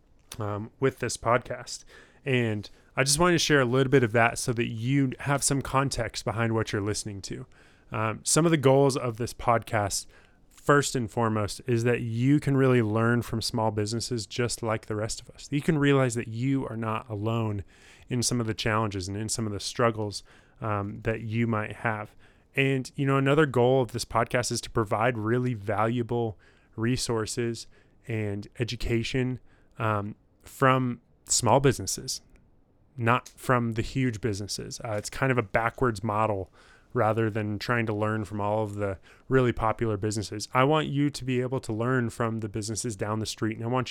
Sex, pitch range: male, 110-125 Hz